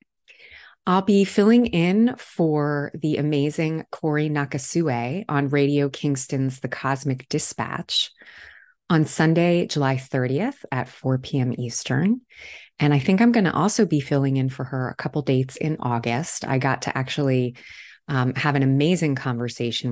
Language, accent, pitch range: English, American, 125-155 Hz